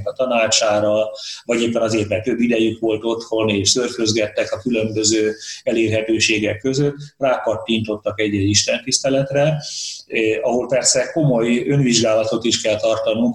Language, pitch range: Hungarian, 105-120 Hz